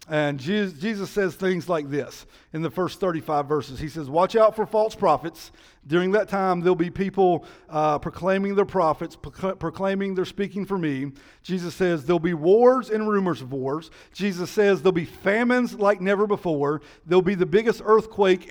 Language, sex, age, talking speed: English, male, 50-69, 180 wpm